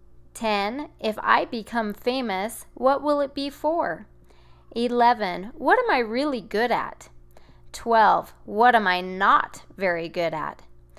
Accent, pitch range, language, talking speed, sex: American, 165-250 Hz, English, 135 wpm, female